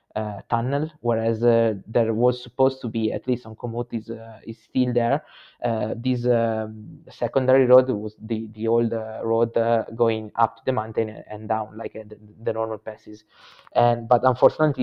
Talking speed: 185 wpm